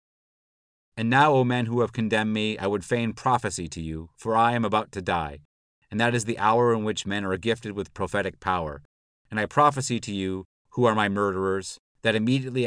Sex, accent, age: male, American, 40-59